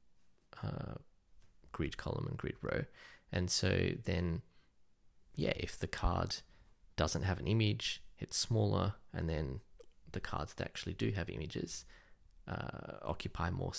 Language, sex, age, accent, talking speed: English, male, 20-39, Australian, 135 wpm